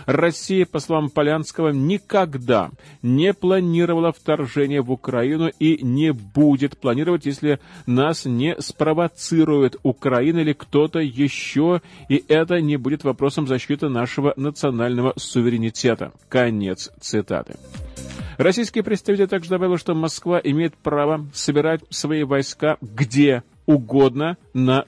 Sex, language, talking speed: male, Russian, 115 wpm